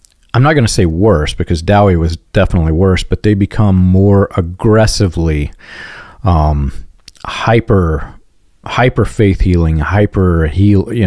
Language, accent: English, American